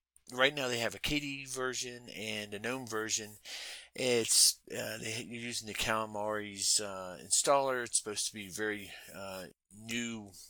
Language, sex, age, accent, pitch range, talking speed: English, male, 40-59, American, 95-115 Hz, 150 wpm